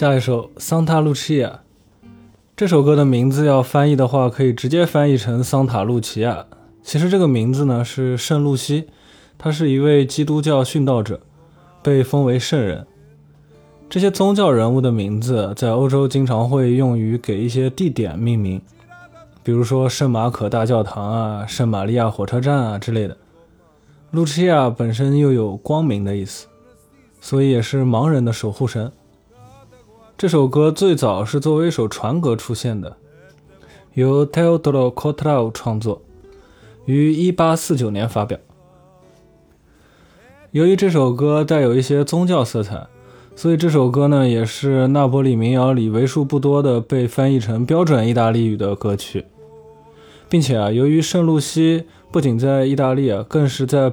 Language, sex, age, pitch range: Chinese, male, 20-39, 115-150 Hz